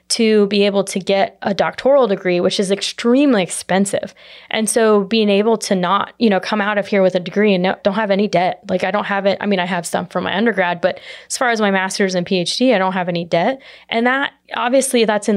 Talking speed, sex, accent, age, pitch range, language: 245 wpm, female, American, 20-39, 190-225 Hz, English